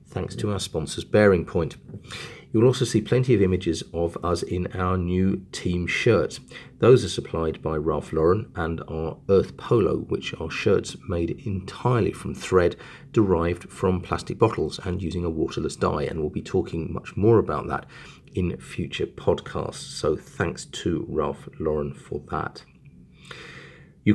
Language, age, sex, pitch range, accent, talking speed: English, 40-59, male, 85-115 Hz, British, 160 wpm